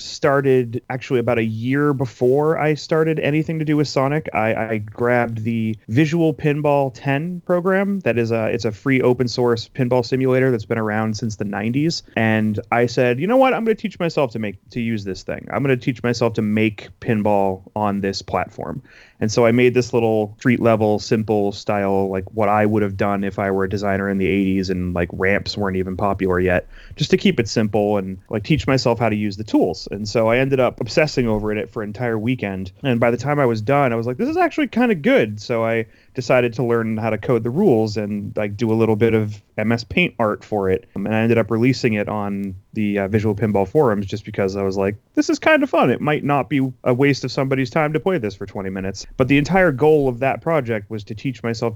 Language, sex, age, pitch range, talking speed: English, male, 30-49, 105-130 Hz, 240 wpm